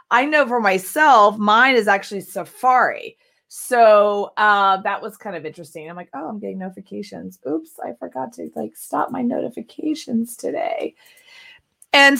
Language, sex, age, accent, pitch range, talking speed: English, female, 30-49, American, 180-245 Hz, 155 wpm